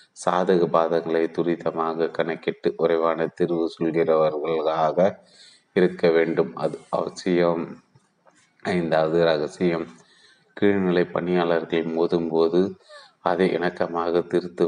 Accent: native